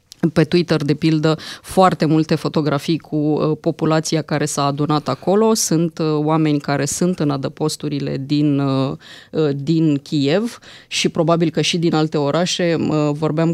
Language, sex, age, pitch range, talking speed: Romanian, female, 20-39, 145-165 Hz, 135 wpm